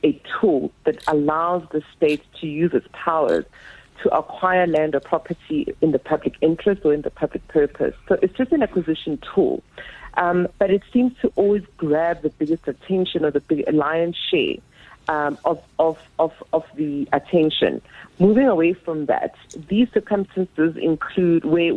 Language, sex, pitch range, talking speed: English, female, 150-180 Hz, 165 wpm